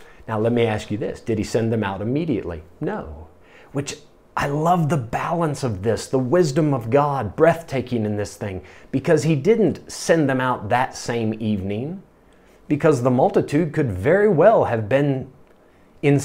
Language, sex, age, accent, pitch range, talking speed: English, male, 30-49, American, 110-155 Hz, 170 wpm